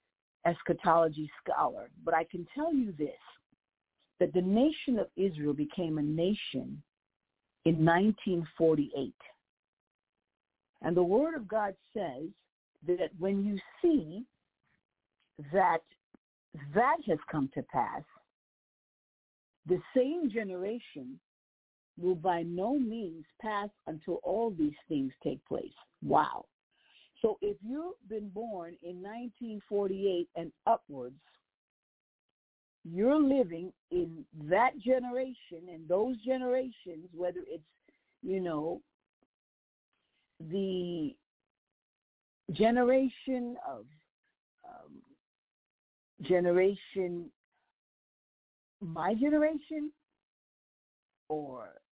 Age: 50-69